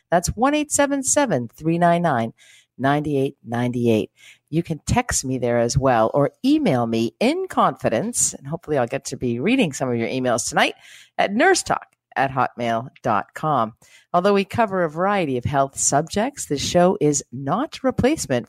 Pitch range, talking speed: 120-190 Hz, 140 wpm